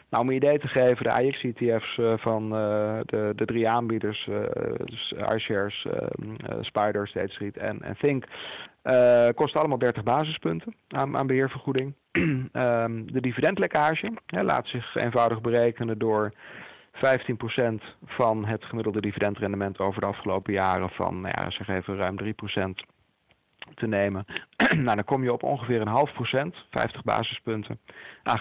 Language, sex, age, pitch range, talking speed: Dutch, male, 40-59, 105-130 Hz, 150 wpm